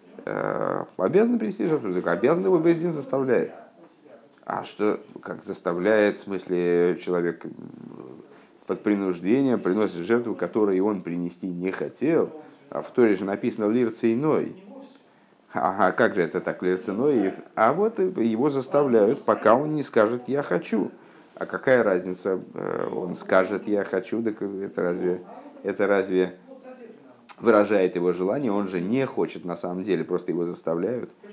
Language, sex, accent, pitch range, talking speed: Russian, male, native, 95-145 Hz, 140 wpm